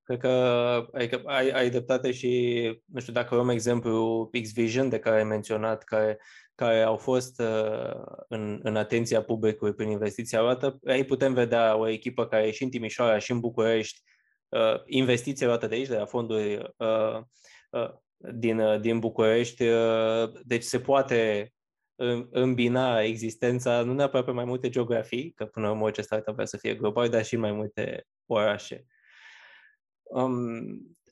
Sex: male